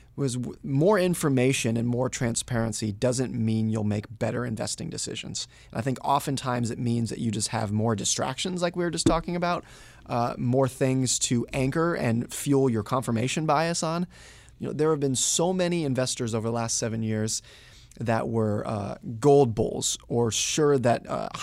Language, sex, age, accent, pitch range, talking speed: English, male, 20-39, American, 115-130 Hz, 180 wpm